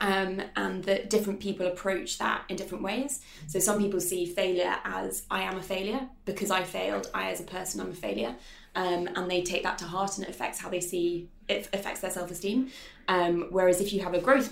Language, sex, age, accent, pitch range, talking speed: English, female, 20-39, British, 175-200 Hz, 220 wpm